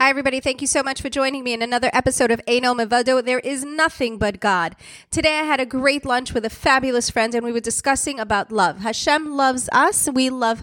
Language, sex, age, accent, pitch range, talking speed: English, female, 30-49, American, 225-275 Hz, 230 wpm